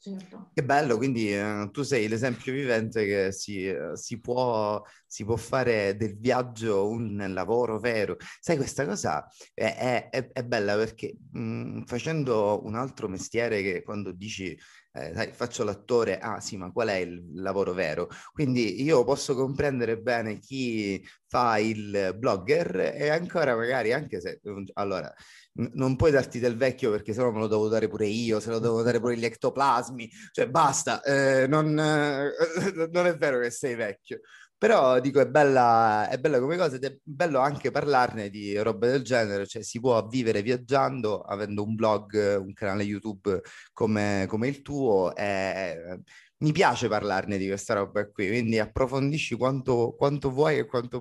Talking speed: 170 wpm